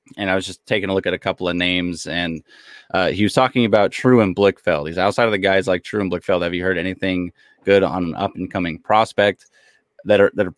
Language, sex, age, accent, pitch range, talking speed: English, male, 20-39, American, 90-105 Hz, 255 wpm